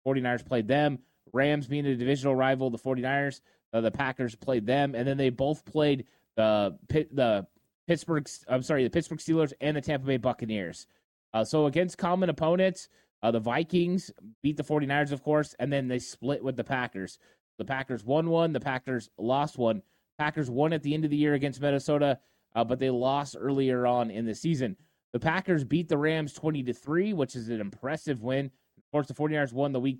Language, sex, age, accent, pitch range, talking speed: English, male, 20-39, American, 125-155 Hz, 200 wpm